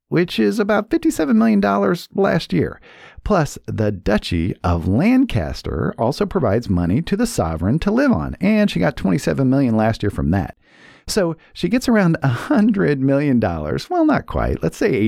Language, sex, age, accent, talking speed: English, male, 50-69, American, 165 wpm